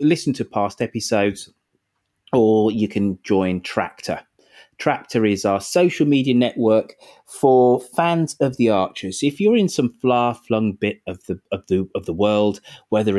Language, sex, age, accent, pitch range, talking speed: English, male, 30-49, British, 100-155 Hz, 155 wpm